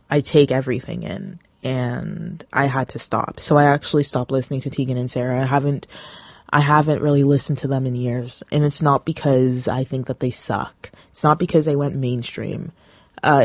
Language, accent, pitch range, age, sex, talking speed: English, American, 130-150 Hz, 20-39, female, 195 wpm